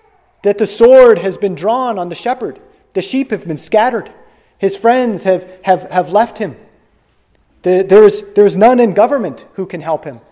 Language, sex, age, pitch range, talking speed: English, male, 30-49, 160-210 Hz, 175 wpm